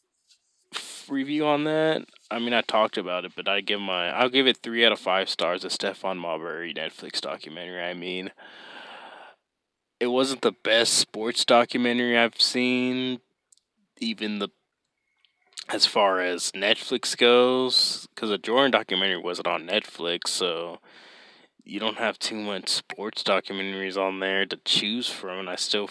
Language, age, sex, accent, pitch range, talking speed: English, 20-39, male, American, 95-115 Hz, 155 wpm